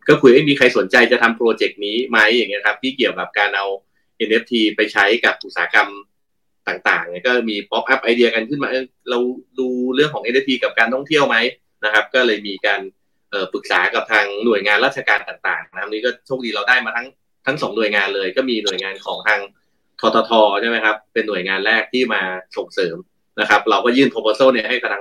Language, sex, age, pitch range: Thai, male, 30-49, 110-130 Hz